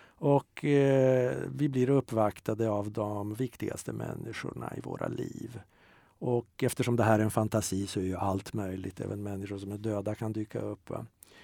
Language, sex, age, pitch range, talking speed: Swedish, male, 50-69, 105-130 Hz, 175 wpm